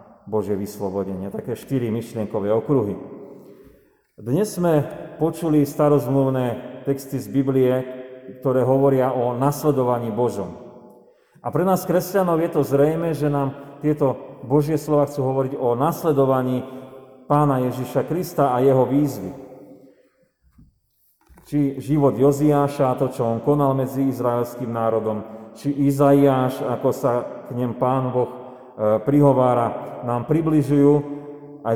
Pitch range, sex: 125-150 Hz, male